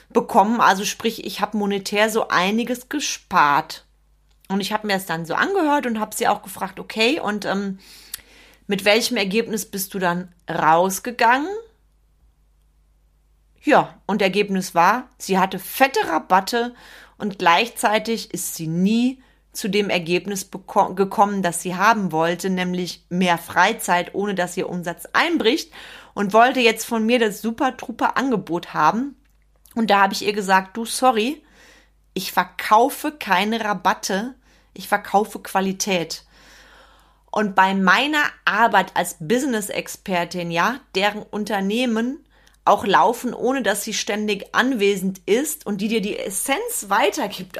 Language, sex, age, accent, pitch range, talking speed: German, female, 30-49, German, 185-230 Hz, 135 wpm